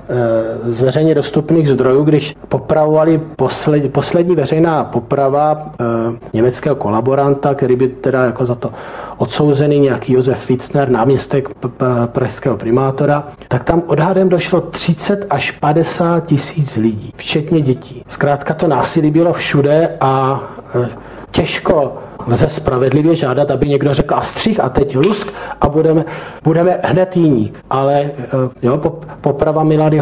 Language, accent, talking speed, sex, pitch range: Czech, native, 130 wpm, male, 130-155 Hz